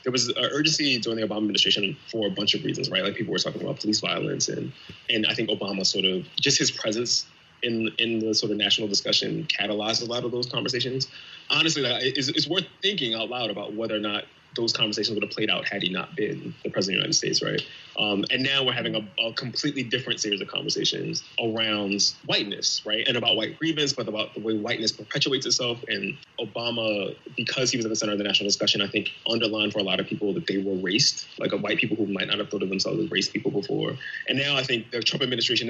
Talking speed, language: 240 wpm, English